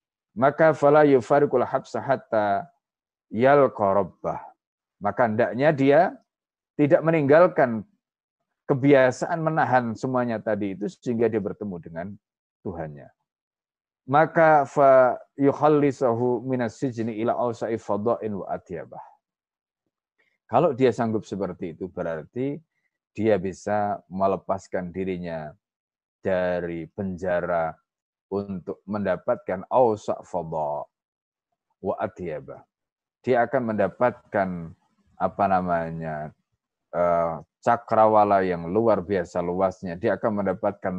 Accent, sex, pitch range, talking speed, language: native, male, 90-130 Hz, 80 wpm, Indonesian